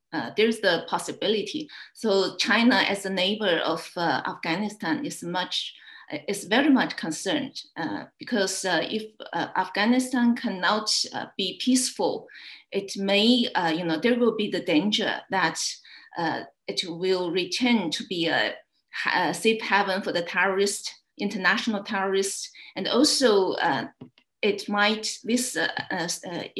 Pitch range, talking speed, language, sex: 185-245 Hz, 140 wpm, English, female